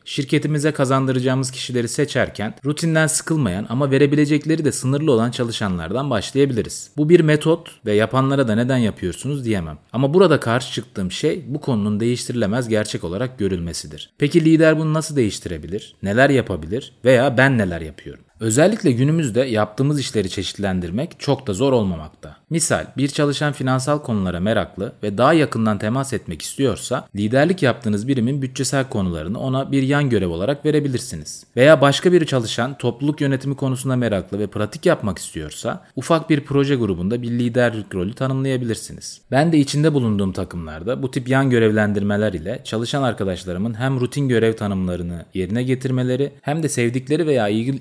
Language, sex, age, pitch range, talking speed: Turkish, male, 30-49, 105-140 Hz, 150 wpm